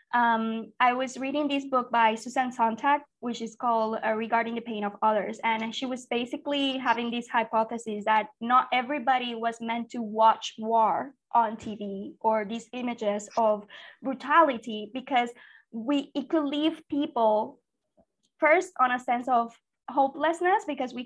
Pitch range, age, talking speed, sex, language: 235-285 Hz, 20-39, 150 wpm, female, English